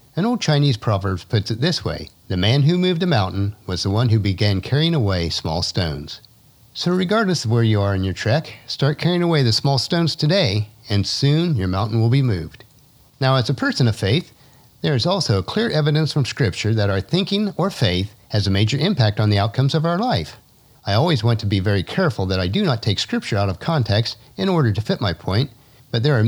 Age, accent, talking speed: 50-69, American, 225 wpm